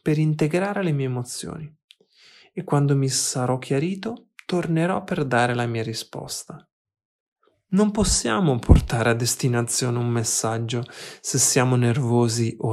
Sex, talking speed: male, 125 wpm